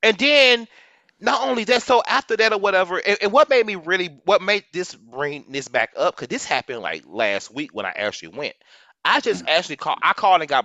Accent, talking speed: American, 230 wpm